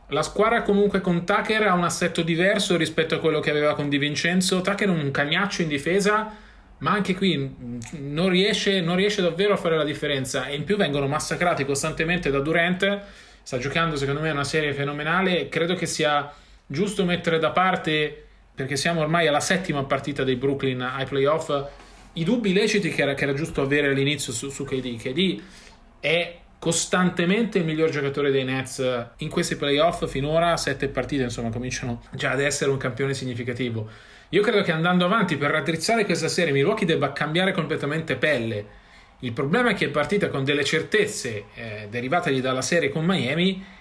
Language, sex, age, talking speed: Italian, male, 30-49, 180 wpm